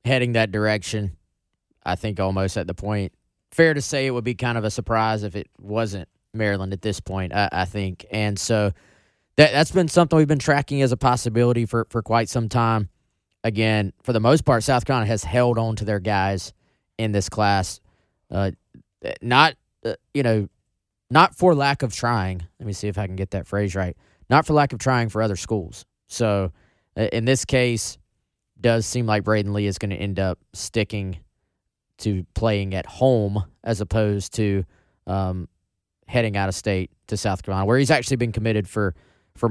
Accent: American